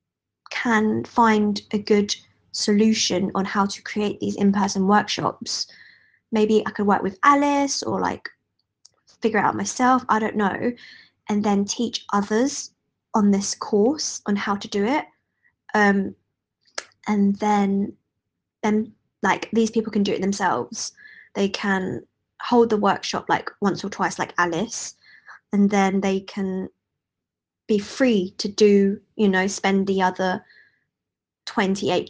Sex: female